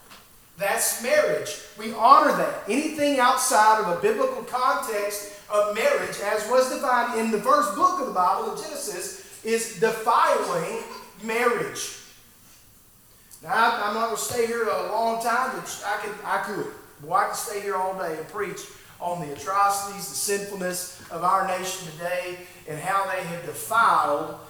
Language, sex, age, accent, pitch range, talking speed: English, male, 40-59, American, 185-235 Hz, 160 wpm